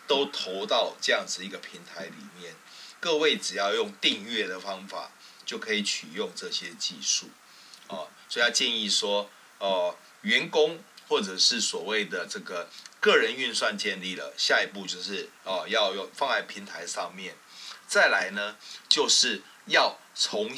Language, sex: Chinese, male